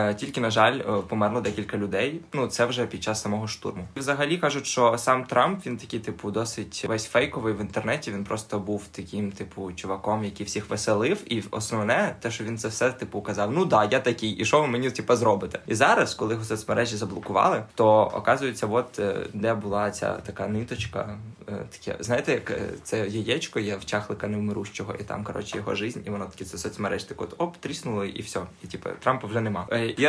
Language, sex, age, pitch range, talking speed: Ukrainian, male, 20-39, 105-120 Hz, 200 wpm